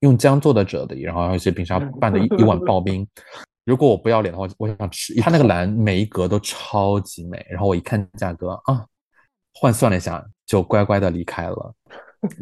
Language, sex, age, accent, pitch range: Chinese, male, 20-39, native, 95-115 Hz